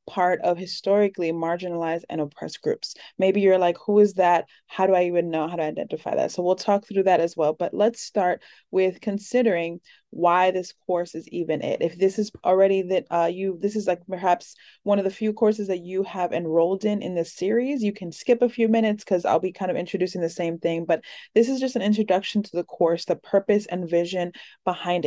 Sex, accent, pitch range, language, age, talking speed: female, American, 170-200 Hz, English, 20-39, 225 wpm